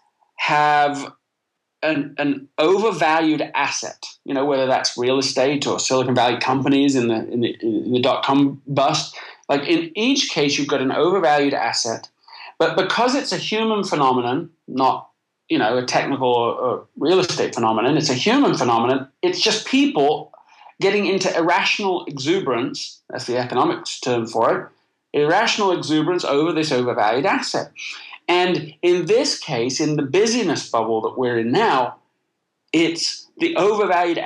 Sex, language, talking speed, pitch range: male, English, 150 wpm, 135-225 Hz